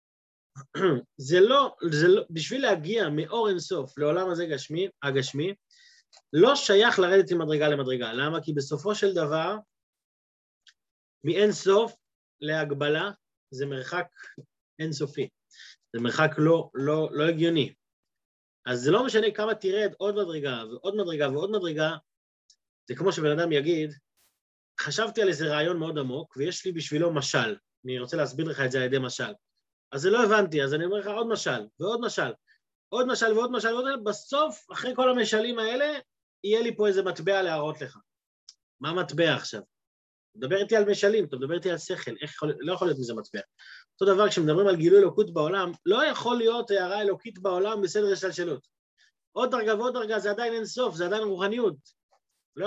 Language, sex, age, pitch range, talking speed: Hebrew, male, 30-49, 155-210 Hz, 165 wpm